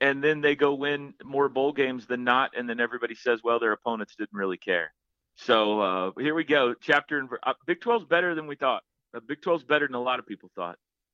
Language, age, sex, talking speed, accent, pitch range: English, 40-59, male, 230 wpm, American, 110-145 Hz